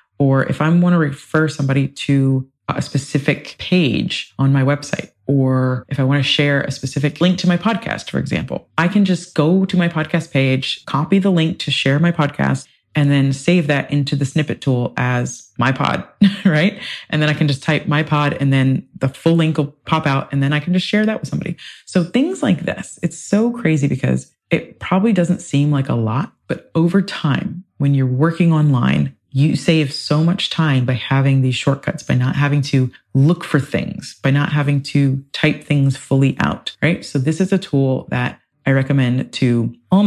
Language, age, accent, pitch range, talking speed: English, 30-49, American, 135-165 Hz, 205 wpm